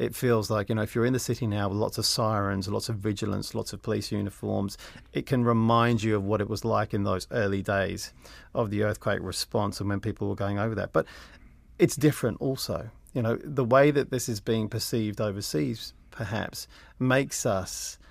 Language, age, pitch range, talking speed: English, 40-59, 105-130 Hz, 210 wpm